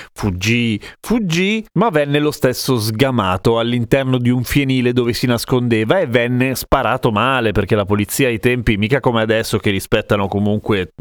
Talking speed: 160 wpm